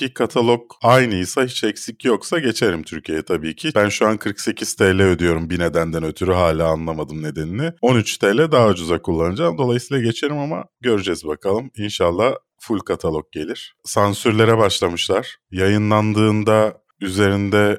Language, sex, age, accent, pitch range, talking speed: Turkish, male, 30-49, native, 90-120 Hz, 130 wpm